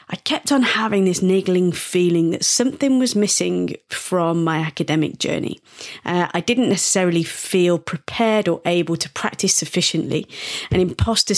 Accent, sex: British, female